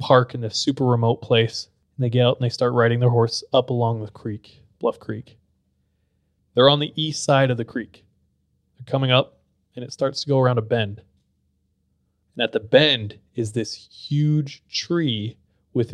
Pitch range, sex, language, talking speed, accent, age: 100-130 Hz, male, English, 190 wpm, American, 20-39